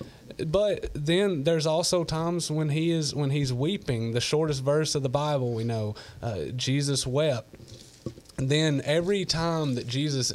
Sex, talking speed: male, 155 wpm